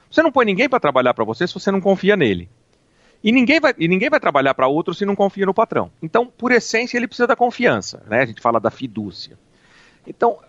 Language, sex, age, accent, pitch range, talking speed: Portuguese, male, 40-59, Brazilian, 140-220 Hz, 235 wpm